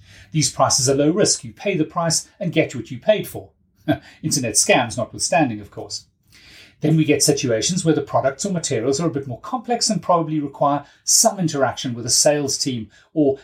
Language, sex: English, male